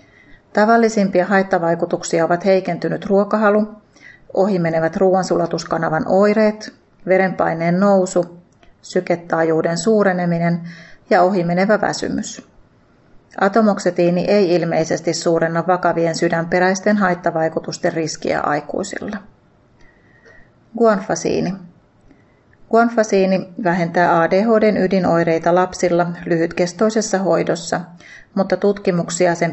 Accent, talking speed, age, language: native, 70 wpm, 30-49, Finnish